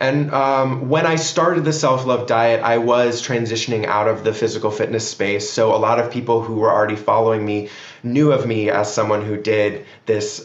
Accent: American